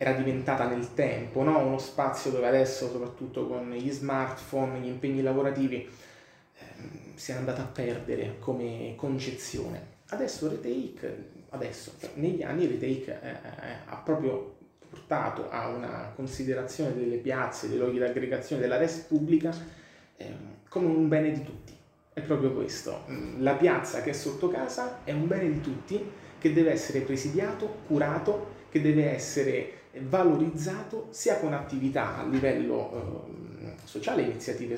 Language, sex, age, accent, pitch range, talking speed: Italian, male, 30-49, native, 125-150 Hz, 145 wpm